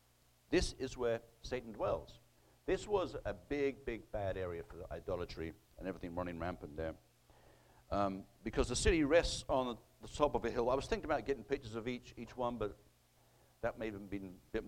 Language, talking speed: English, 200 wpm